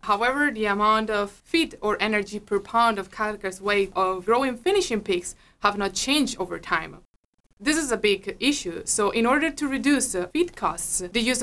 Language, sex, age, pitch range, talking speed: English, female, 20-39, 190-235 Hz, 185 wpm